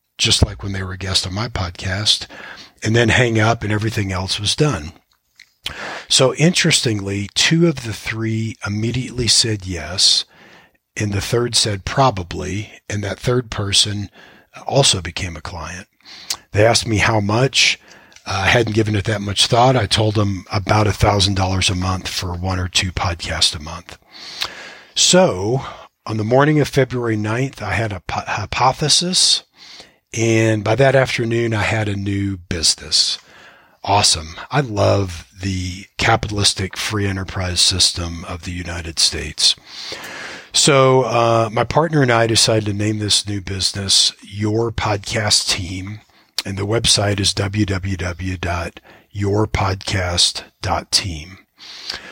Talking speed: 135 wpm